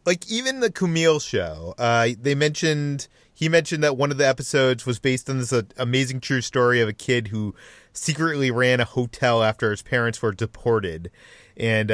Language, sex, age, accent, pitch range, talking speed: English, male, 30-49, American, 115-145 Hz, 185 wpm